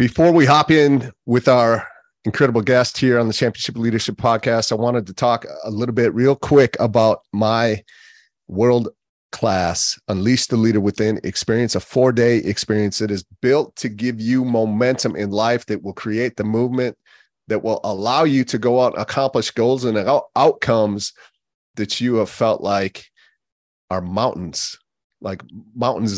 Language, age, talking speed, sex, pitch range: English, 30-49, 160 wpm, male, 95-120 Hz